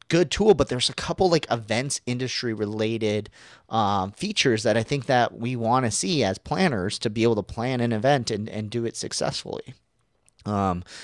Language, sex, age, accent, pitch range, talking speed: English, male, 30-49, American, 100-125 Hz, 190 wpm